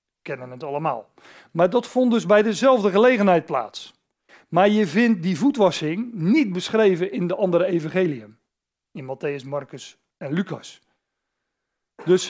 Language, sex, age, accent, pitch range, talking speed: Dutch, male, 40-59, Dutch, 155-200 Hz, 135 wpm